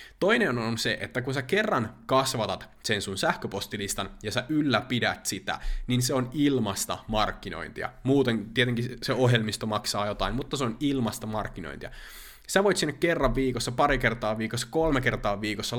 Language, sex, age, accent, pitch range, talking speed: Finnish, male, 20-39, native, 100-125 Hz, 160 wpm